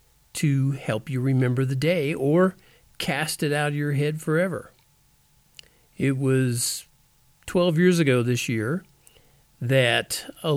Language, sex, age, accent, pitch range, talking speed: English, male, 50-69, American, 120-150 Hz, 130 wpm